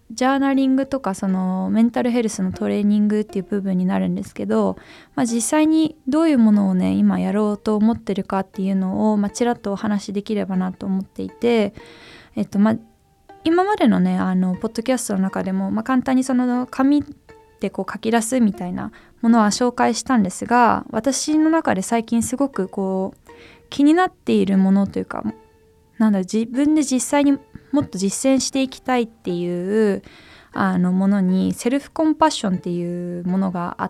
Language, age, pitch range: Japanese, 20-39, 195-265 Hz